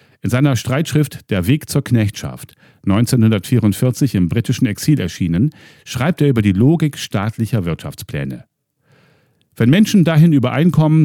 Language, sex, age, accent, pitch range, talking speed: German, male, 50-69, German, 95-145 Hz, 125 wpm